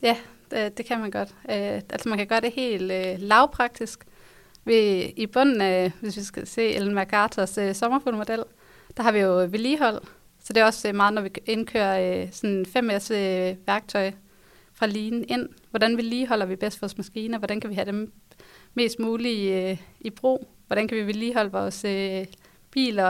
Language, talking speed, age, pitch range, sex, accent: Danish, 160 wpm, 30-49, 200-235 Hz, female, native